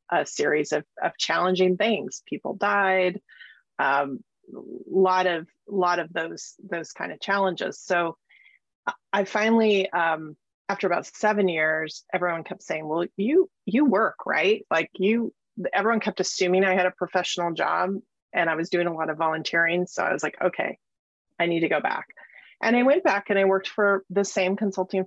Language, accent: English, American